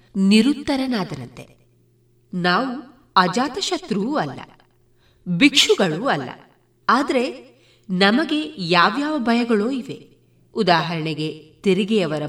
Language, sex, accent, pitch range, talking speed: Kannada, female, native, 160-245 Hz, 65 wpm